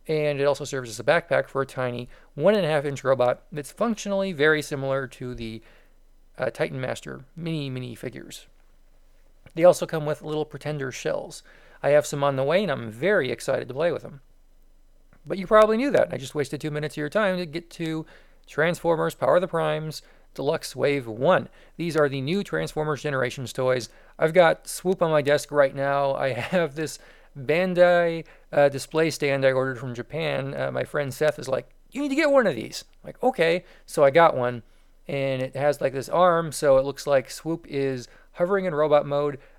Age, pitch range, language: 40-59, 135-165 Hz, English